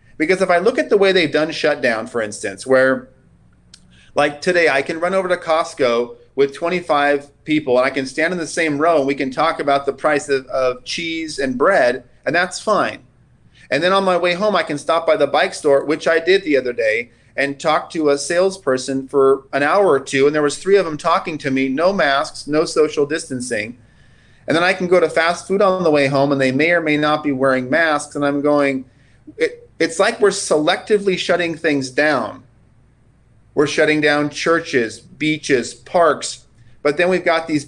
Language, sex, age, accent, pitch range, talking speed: English, male, 40-59, American, 135-165 Hz, 210 wpm